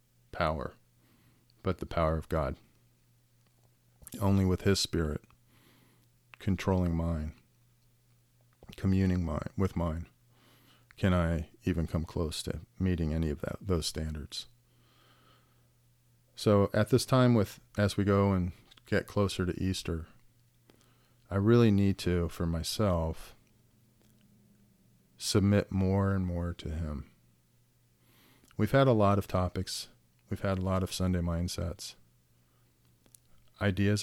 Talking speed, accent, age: 120 wpm, American, 40-59